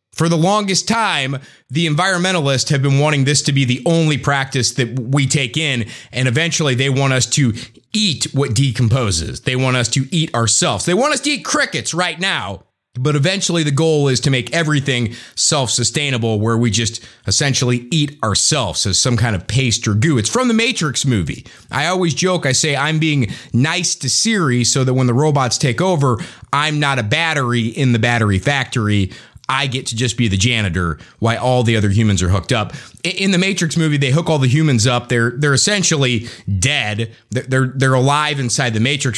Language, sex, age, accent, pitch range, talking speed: English, male, 30-49, American, 115-150 Hz, 200 wpm